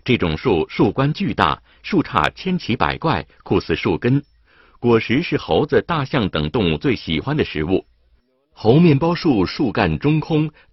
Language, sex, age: Chinese, male, 50-69